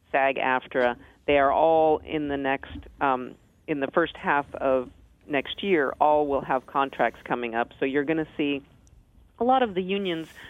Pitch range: 125-155 Hz